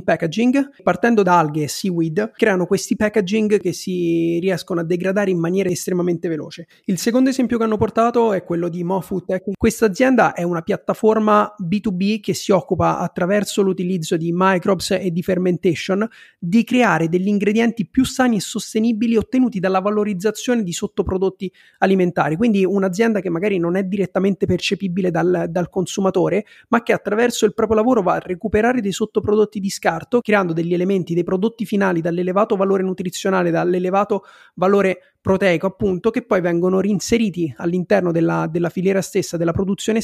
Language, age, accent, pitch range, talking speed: Italian, 30-49, native, 175-210 Hz, 160 wpm